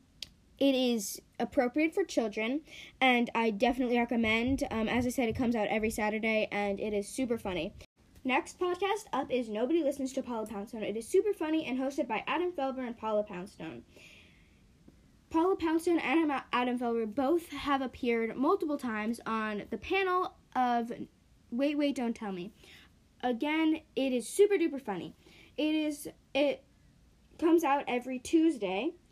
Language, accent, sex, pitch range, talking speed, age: English, American, female, 225-285 Hz, 160 wpm, 10-29